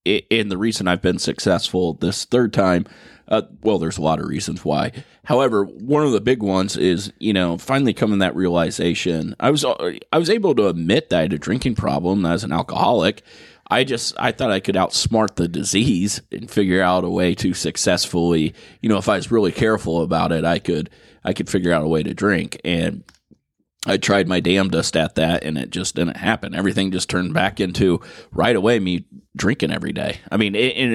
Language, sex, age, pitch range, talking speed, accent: English, male, 30-49, 90-110 Hz, 210 wpm, American